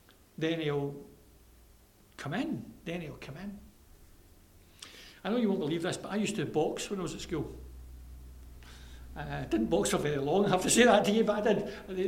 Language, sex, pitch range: English, male, 145-205 Hz